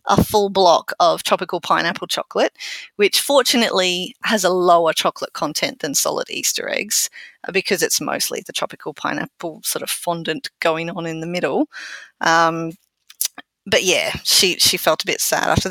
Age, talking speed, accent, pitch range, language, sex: 30-49, 160 wpm, Australian, 185-250 Hz, English, female